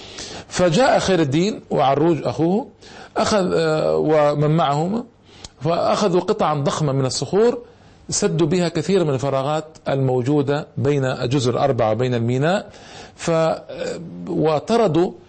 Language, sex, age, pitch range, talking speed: Arabic, male, 40-59, 120-175 Hz, 100 wpm